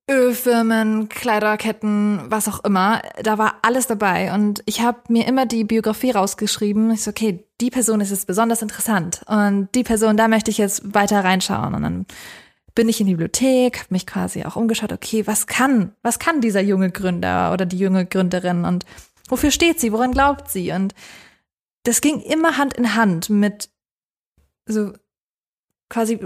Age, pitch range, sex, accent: 20-39, 205-240 Hz, female, German